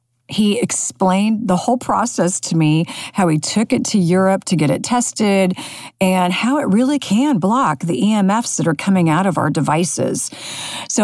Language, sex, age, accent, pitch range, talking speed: English, female, 40-59, American, 160-225 Hz, 180 wpm